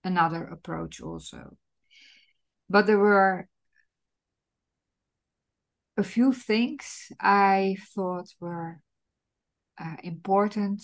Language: Dutch